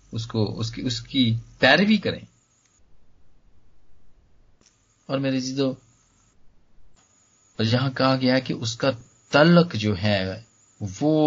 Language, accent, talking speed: Hindi, native, 90 wpm